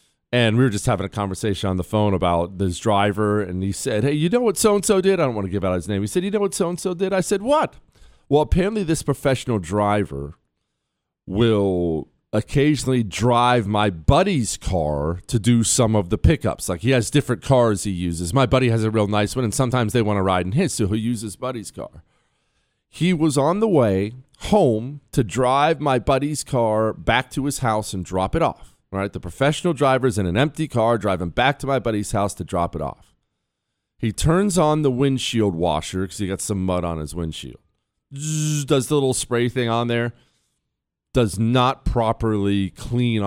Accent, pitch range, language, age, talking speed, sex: American, 100-145 Hz, English, 40-59, 205 wpm, male